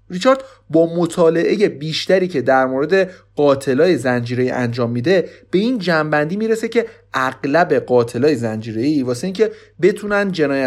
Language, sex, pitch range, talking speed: Persian, male, 125-195 Hz, 130 wpm